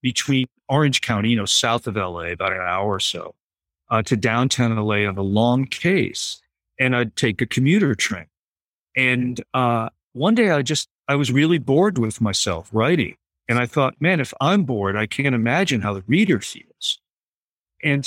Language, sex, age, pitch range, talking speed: English, male, 50-69, 105-130 Hz, 185 wpm